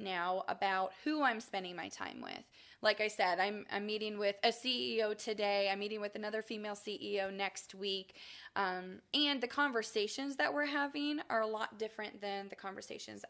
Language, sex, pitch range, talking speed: English, female, 200-240 Hz, 180 wpm